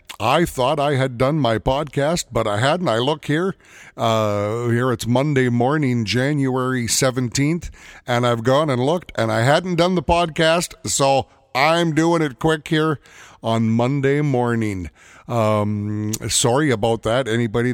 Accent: American